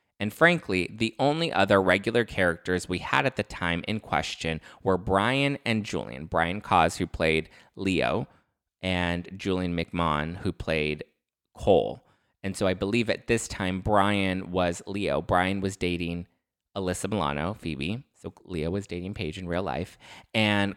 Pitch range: 90-110 Hz